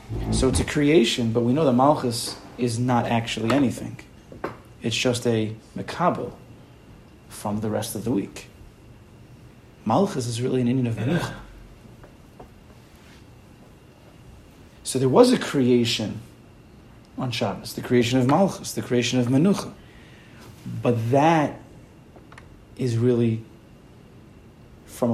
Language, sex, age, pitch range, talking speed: English, male, 40-59, 115-145 Hz, 120 wpm